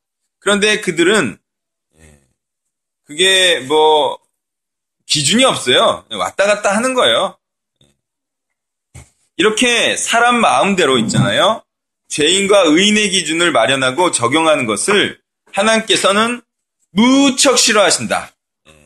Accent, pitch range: native, 180-235 Hz